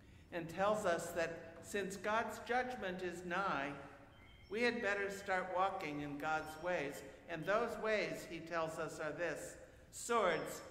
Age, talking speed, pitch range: 60-79, 145 wpm, 140-200 Hz